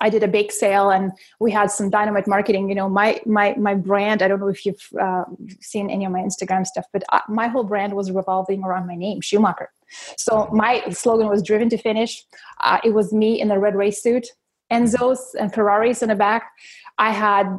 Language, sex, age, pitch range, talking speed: English, female, 20-39, 200-235 Hz, 215 wpm